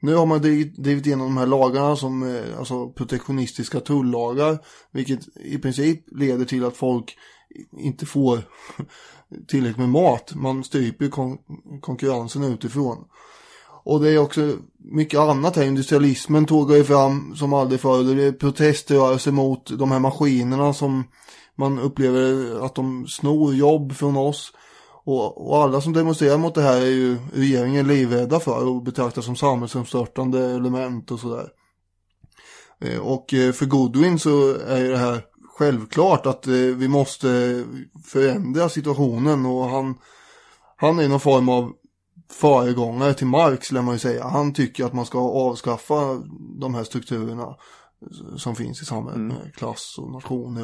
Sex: male